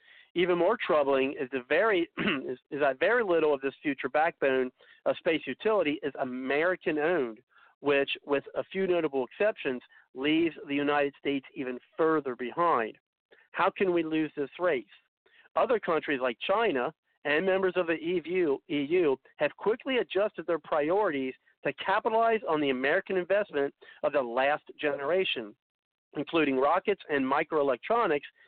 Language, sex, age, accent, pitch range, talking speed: English, male, 50-69, American, 140-205 Hz, 135 wpm